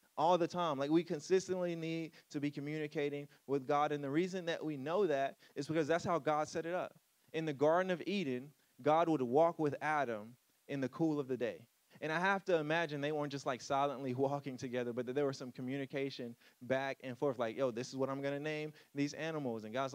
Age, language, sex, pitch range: 20-39, English, male, 135-160 Hz